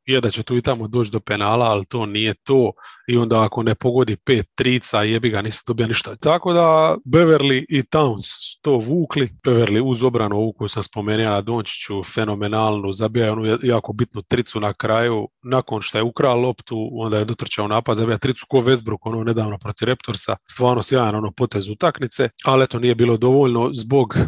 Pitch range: 110-130 Hz